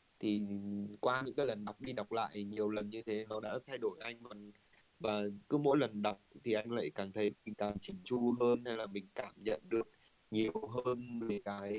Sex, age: male, 20-39